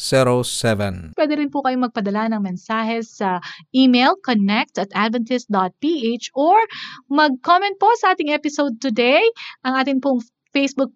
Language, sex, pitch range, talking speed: Filipino, female, 210-280 Hz, 125 wpm